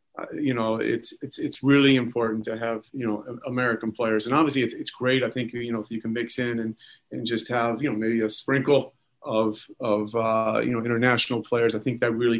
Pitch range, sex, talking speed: 110-130 Hz, male, 225 wpm